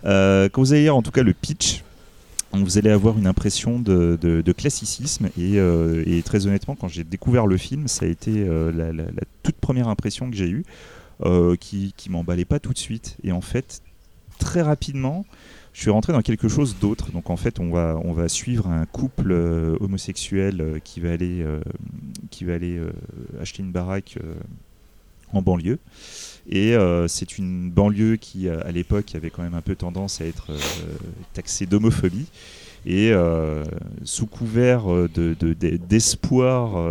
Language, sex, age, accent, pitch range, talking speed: French, male, 30-49, French, 85-110 Hz, 185 wpm